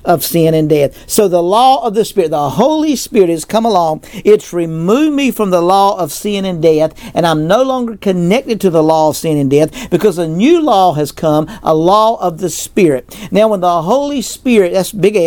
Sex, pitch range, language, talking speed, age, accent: male, 165-220 Hz, English, 220 wpm, 50-69, American